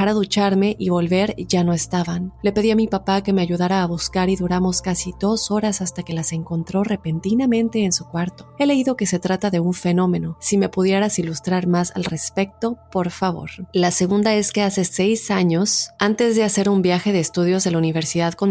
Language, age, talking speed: Spanish, 30-49, 210 wpm